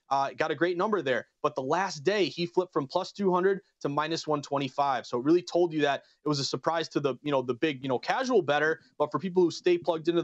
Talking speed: 265 wpm